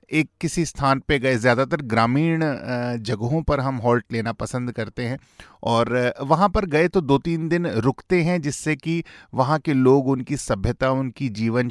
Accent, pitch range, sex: native, 125-185 Hz, male